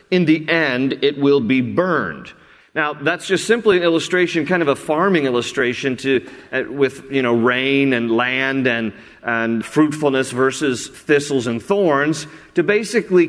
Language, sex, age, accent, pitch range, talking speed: English, male, 40-59, American, 135-170 Hz, 155 wpm